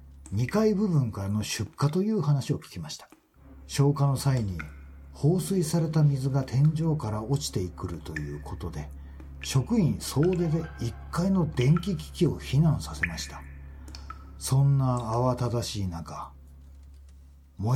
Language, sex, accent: Japanese, male, native